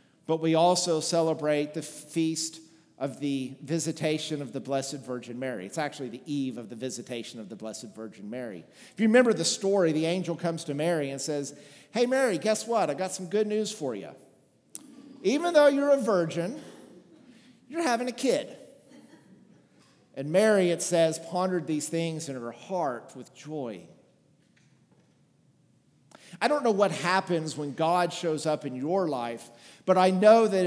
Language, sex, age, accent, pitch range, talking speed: English, male, 50-69, American, 155-215 Hz, 170 wpm